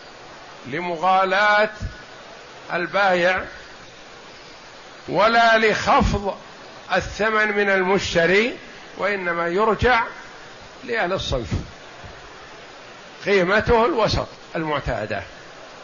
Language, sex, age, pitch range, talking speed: Arabic, male, 50-69, 170-200 Hz, 55 wpm